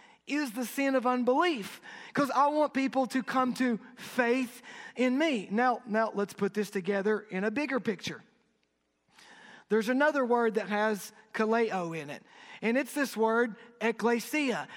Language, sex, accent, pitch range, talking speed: English, male, American, 230-275 Hz, 155 wpm